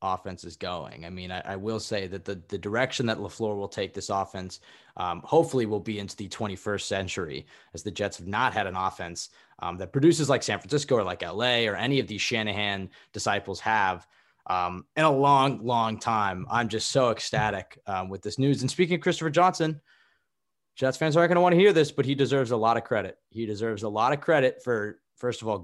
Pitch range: 105-150 Hz